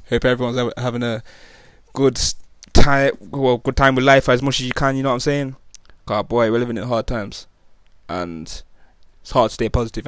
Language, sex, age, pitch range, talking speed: English, male, 20-39, 110-125 Hz, 200 wpm